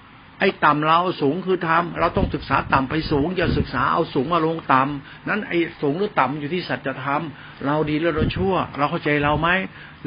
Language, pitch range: Thai, 145-185 Hz